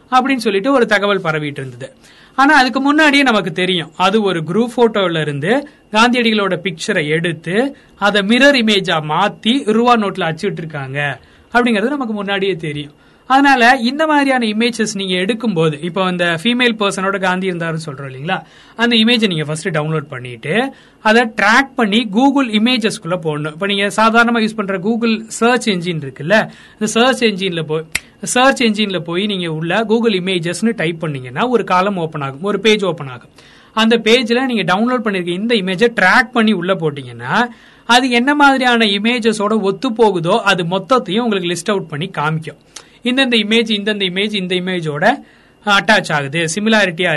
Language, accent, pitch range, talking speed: Tamil, native, 175-235 Hz, 90 wpm